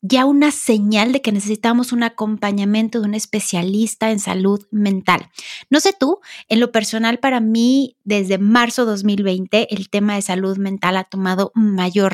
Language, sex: Spanish, female